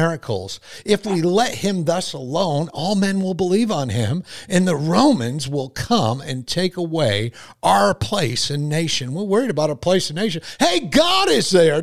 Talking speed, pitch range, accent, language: 185 wpm, 135-180 Hz, American, English